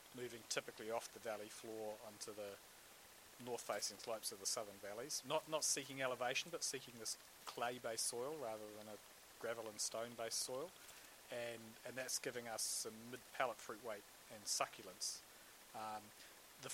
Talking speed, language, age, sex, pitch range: 160 wpm, English, 40-59, male, 105-125 Hz